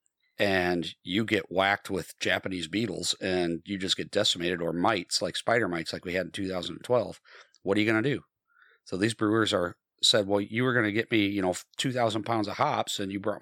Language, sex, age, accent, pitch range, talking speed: English, male, 40-59, American, 90-110 Hz, 220 wpm